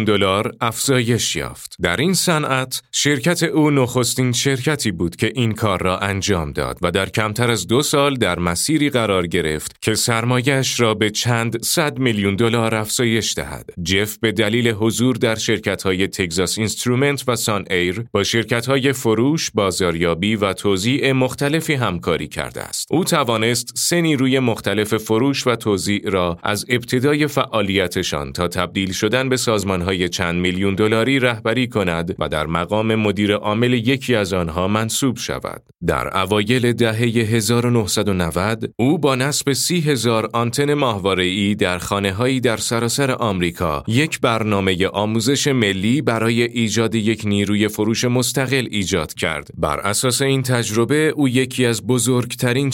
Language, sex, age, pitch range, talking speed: Persian, male, 30-49, 100-125 Hz, 145 wpm